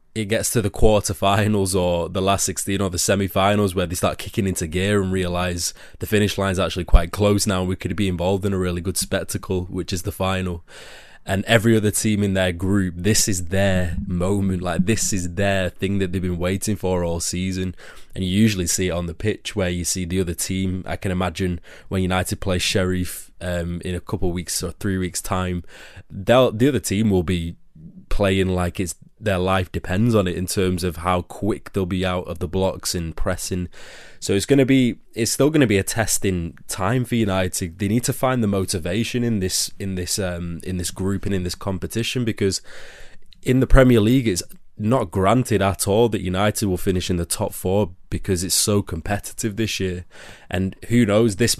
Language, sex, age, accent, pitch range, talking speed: English, male, 20-39, British, 90-105 Hz, 210 wpm